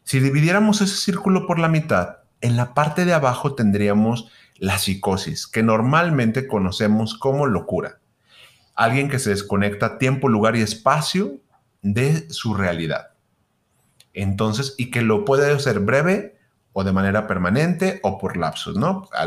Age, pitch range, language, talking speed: 30-49, 100-140 Hz, Spanish, 145 wpm